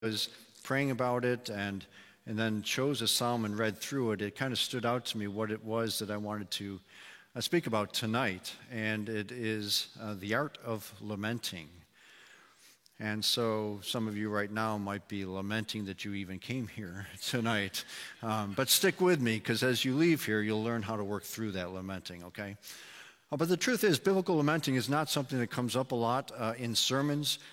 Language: English